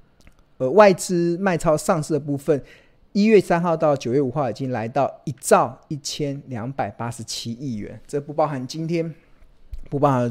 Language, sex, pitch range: Chinese, male, 120-155 Hz